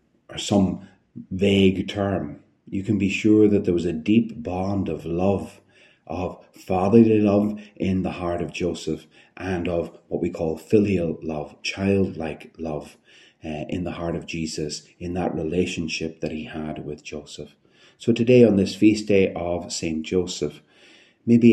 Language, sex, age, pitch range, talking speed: English, male, 30-49, 85-105 Hz, 160 wpm